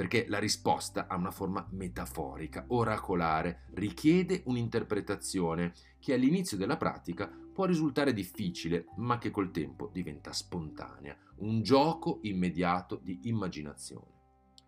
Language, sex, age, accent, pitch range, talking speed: Italian, male, 40-59, native, 85-110 Hz, 115 wpm